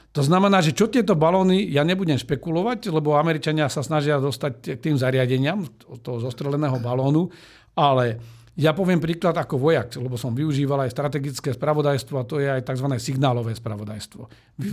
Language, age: Slovak, 50-69